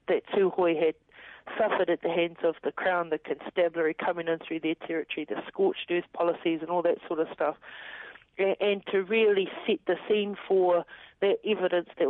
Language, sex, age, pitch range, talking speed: English, female, 50-69, 185-275 Hz, 185 wpm